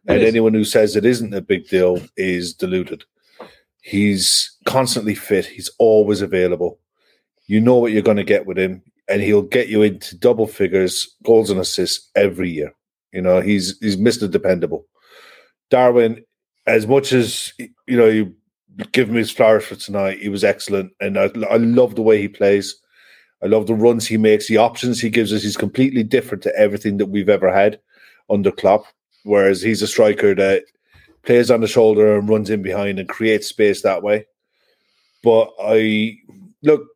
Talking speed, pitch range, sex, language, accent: 180 wpm, 105-125 Hz, male, English, British